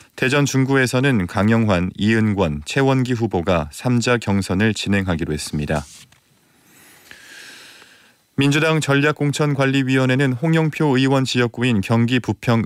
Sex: male